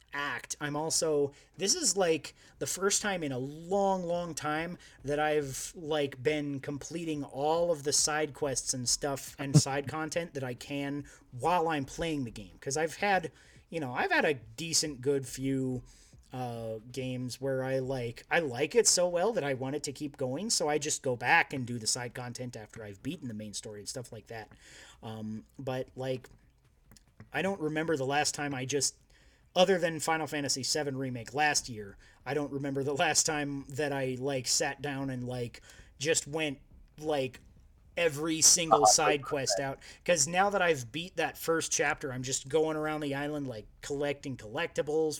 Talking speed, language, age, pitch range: 190 wpm, English, 30-49, 130-155 Hz